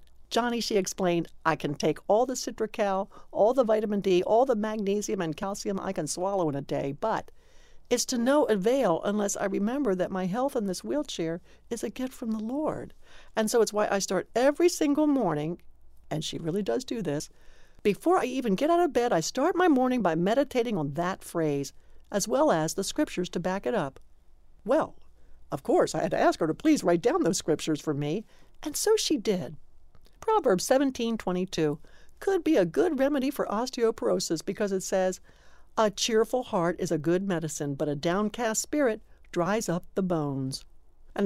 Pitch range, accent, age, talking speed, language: 160-240 Hz, American, 60-79, 195 wpm, English